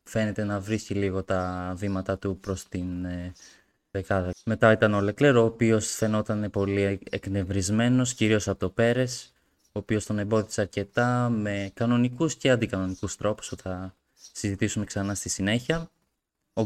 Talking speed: 140 wpm